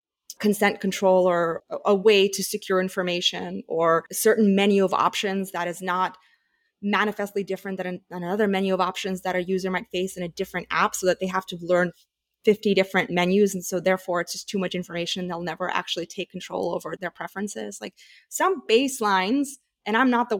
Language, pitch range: English, 180-225 Hz